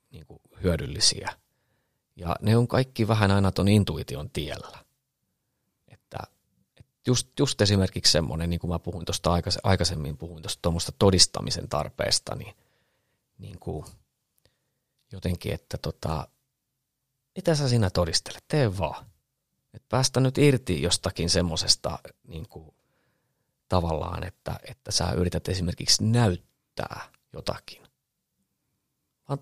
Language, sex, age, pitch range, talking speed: Finnish, male, 30-49, 90-130 Hz, 110 wpm